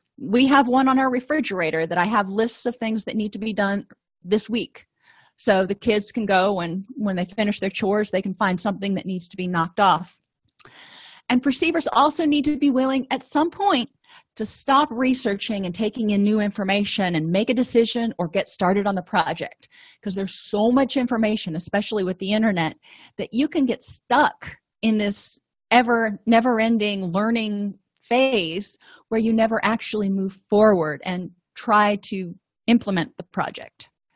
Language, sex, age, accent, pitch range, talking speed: English, female, 30-49, American, 195-240 Hz, 175 wpm